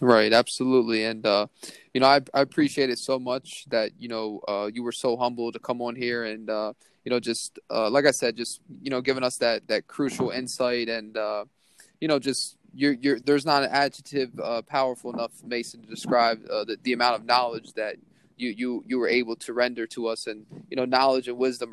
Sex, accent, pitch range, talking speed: male, American, 115-130 Hz, 225 wpm